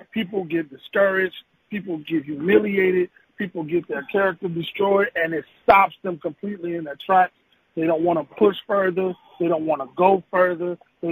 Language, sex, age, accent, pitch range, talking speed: English, male, 40-59, American, 165-190 Hz, 175 wpm